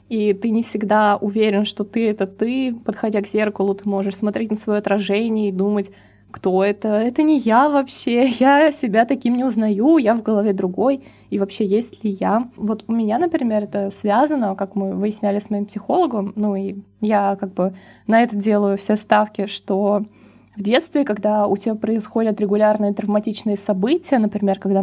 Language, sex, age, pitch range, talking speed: Russian, female, 20-39, 200-230 Hz, 180 wpm